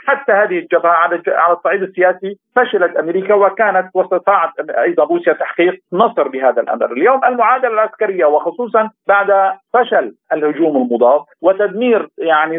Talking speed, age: 125 wpm, 50-69